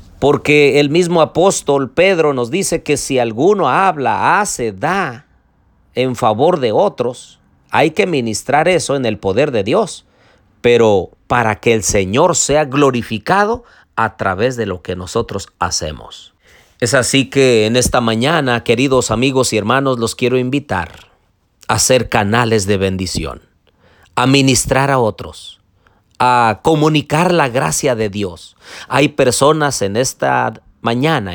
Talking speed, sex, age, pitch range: 140 wpm, male, 40-59, 105-145 Hz